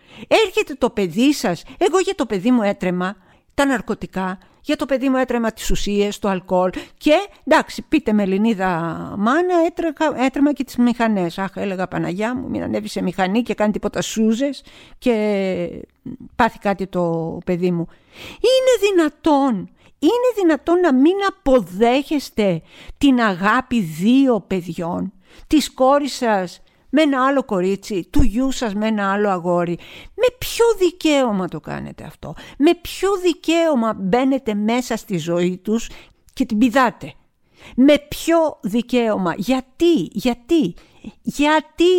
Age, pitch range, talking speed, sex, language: 50-69, 200-295 Hz, 140 wpm, female, Greek